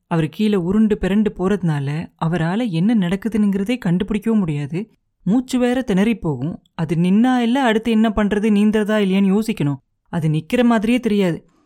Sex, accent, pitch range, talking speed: female, native, 165-220 Hz, 140 wpm